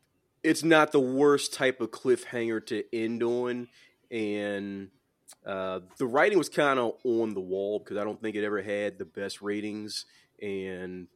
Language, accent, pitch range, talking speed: English, American, 95-115 Hz, 165 wpm